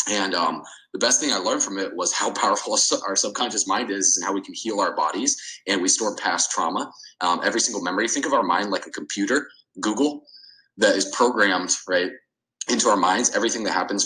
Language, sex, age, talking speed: English, male, 20-39, 215 wpm